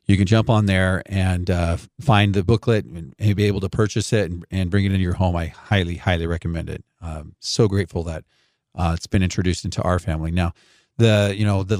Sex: male